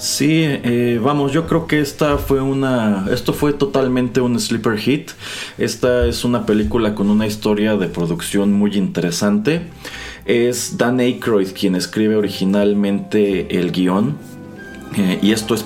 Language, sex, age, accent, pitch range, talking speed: Spanish, male, 30-49, Mexican, 95-115 Hz, 145 wpm